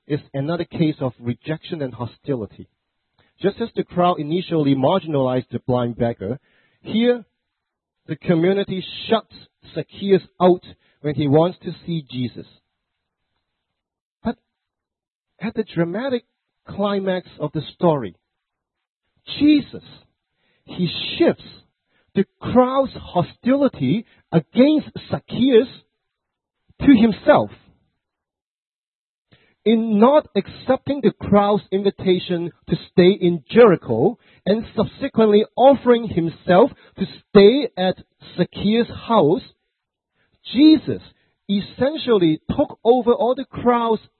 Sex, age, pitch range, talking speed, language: male, 50-69, 155-230 Hz, 100 wpm, English